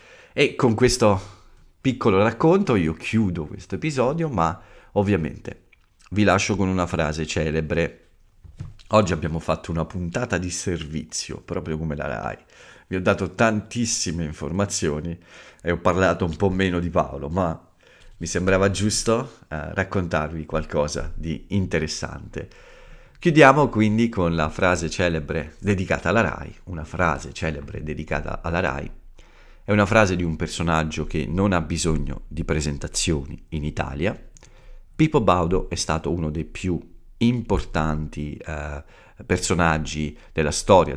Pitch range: 80-100 Hz